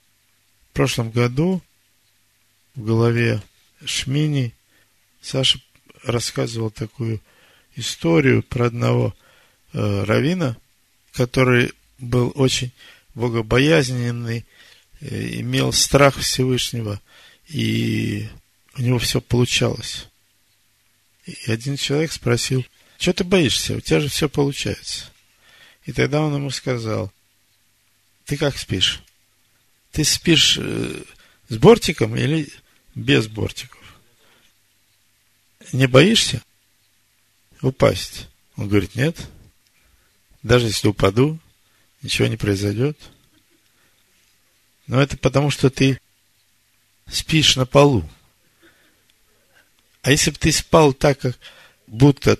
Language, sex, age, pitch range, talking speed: Russian, male, 50-69, 110-135 Hz, 90 wpm